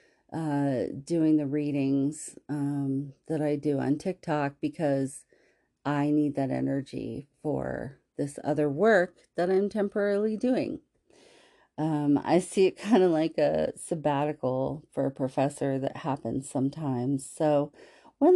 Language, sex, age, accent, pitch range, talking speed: English, female, 40-59, American, 140-170 Hz, 130 wpm